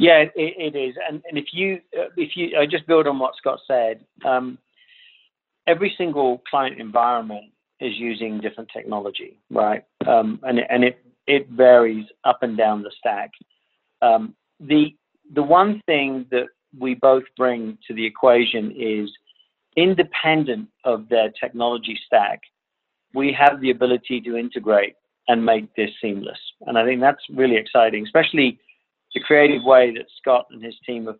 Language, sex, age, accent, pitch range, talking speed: English, male, 50-69, British, 115-155 Hz, 160 wpm